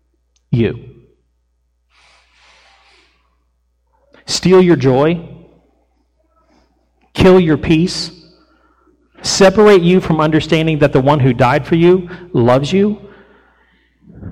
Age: 40-59